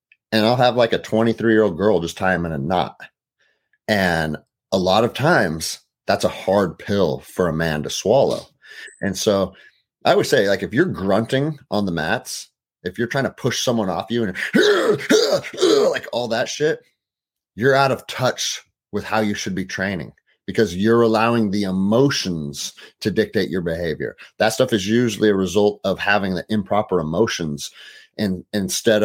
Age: 30-49